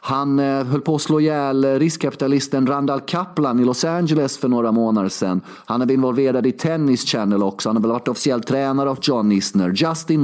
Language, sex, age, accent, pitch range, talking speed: Swedish, male, 30-49, native, 120-155 Hz, 200 wpm